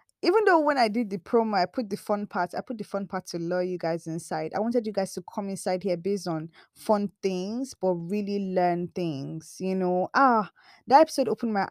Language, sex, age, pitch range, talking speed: English, female, 20-39, 170-215 Hz, 230 wpm